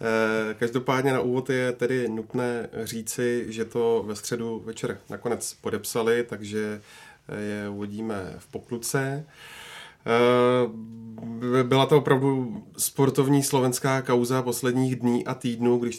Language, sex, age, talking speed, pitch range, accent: Czech, male, 30-49, 115 wpm, 110-125 Hz, native